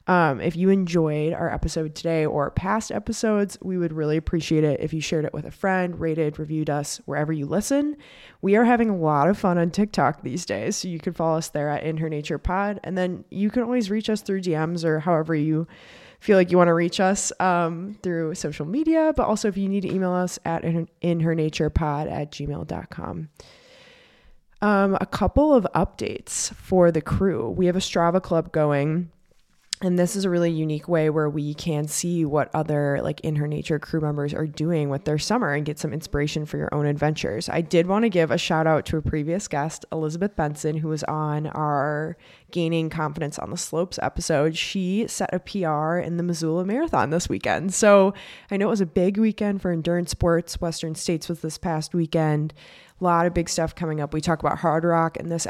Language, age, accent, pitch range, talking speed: English, 20-39, American, 155-185 Hz, 215 wpm